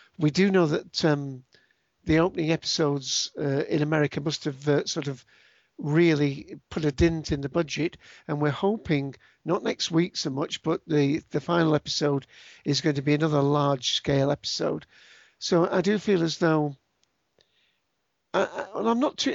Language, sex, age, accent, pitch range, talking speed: English, male, 50-69, British, 145-165 Hz, 170 wpm